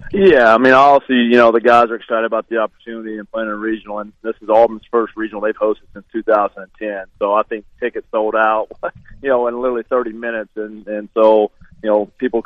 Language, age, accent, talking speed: English, 30-49, American, 215 wpm